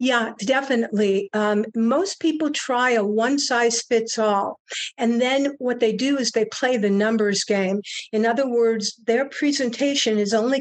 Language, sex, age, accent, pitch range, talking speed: English, female, 60-79, American, 215-255 Hz, 165 wpm